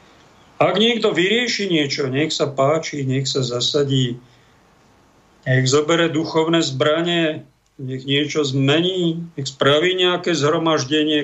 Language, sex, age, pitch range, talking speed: Slovak, male, 50-69, 140-160 Hz, 110 wpm